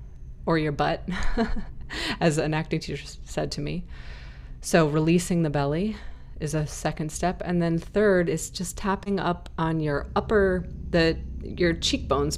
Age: 30-49